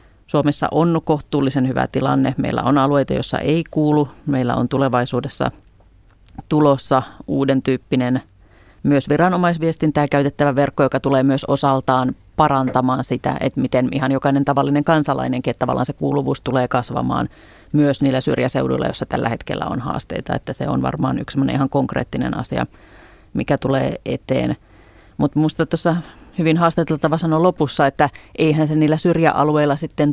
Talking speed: 140 wpm